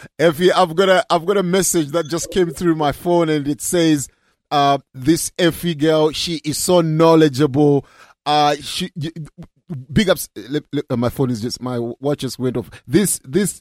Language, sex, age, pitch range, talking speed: English, male, 30-49, 135-165 Hz, 175 wpm